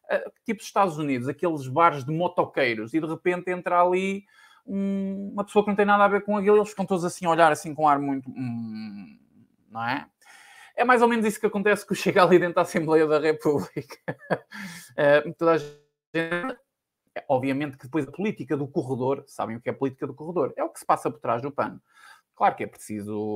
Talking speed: 220 wpm